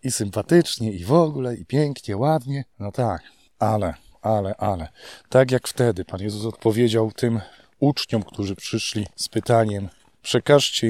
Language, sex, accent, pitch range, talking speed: Polish, male, native, 105-130 Hz, 145 wpm